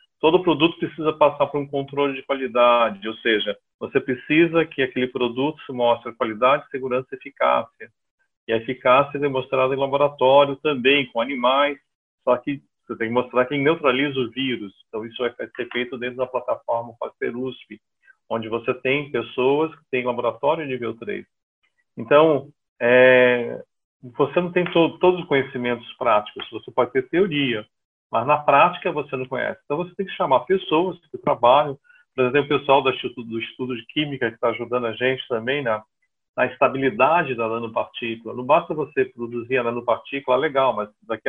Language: Portuguese